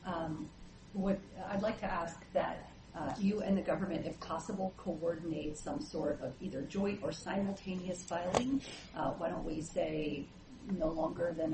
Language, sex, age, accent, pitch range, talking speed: English, female, 40-59, American, 170-210 Hz, 160 wpm